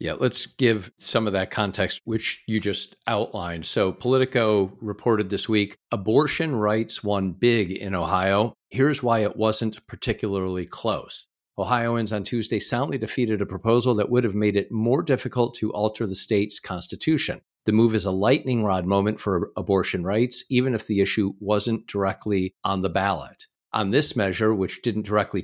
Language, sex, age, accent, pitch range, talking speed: English, male, 50-69, American, 100-120 Hz, 170 wpm